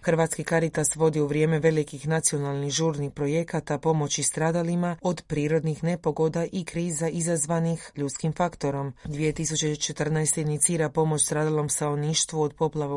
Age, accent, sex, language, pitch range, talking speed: 30-49, native, female, Croatian, 145-170 Hz, 120 wpm